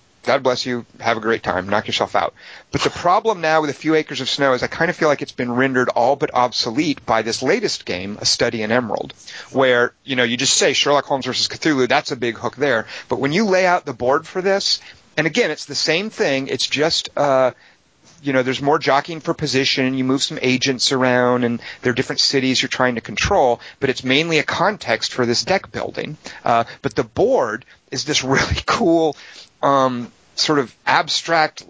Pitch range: 125-150 Hz